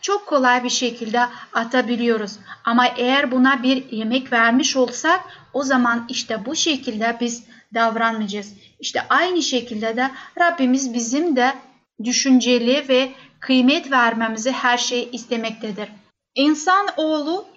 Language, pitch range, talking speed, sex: Turkish, 240-285 Hz, 120 wpm, female